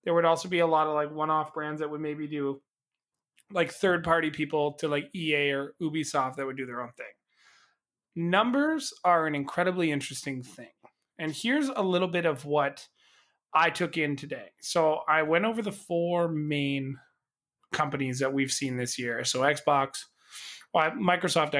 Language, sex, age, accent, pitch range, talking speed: English, male, 20-39, American, 140-175 Hz, 170 wpm